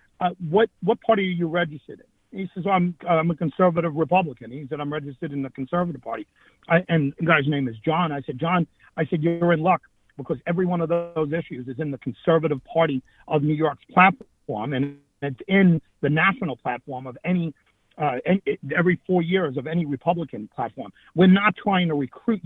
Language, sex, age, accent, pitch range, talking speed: English, male, 50-69, American, 145-180 Hz, 200 wpm